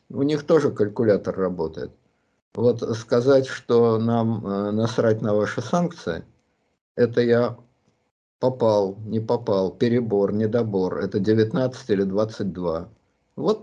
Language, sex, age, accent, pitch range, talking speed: Russian, male, 50-69, native, 95-130 Hz, 110 wpm